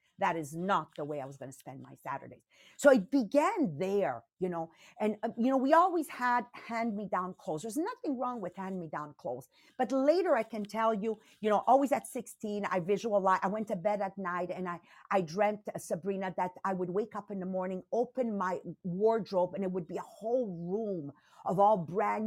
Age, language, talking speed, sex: 50-69, English, 210 wpm, female